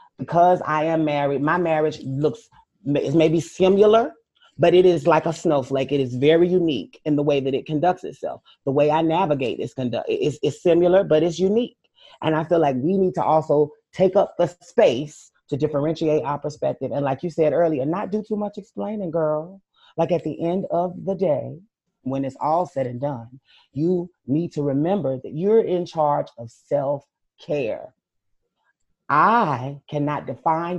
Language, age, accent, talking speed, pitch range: English, 30-49, American, 175 wpm, 140-180 Hz